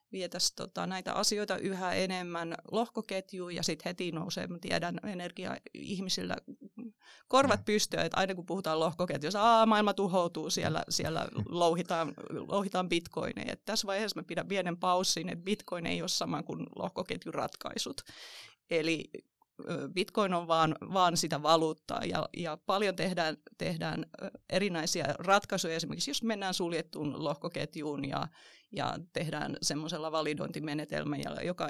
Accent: native